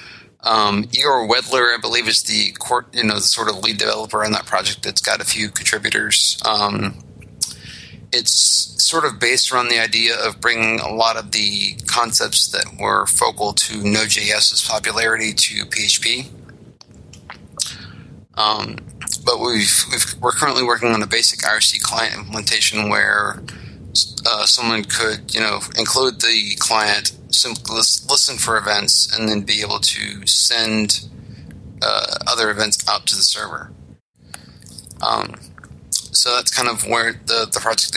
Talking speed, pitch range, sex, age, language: 150 wpm, 110-120 Hz, male, 30-49, English